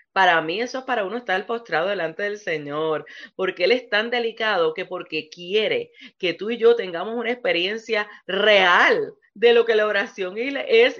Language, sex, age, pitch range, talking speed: English, female, 30-49, 165-230 Hz, 180 wpm